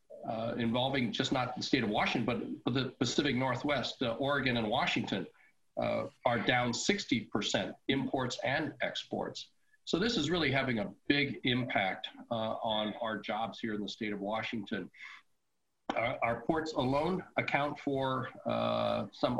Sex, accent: male, American